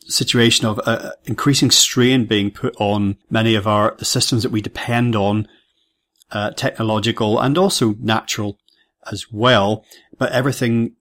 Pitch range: 105-120 Hz